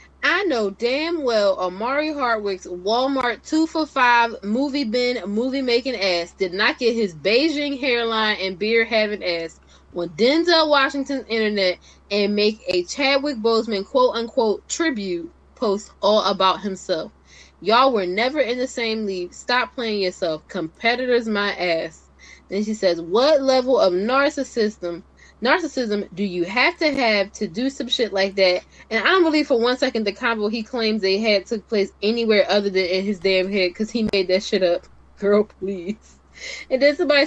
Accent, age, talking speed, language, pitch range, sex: American, 10-29, 165 wpm, English, 190-250 Hz, female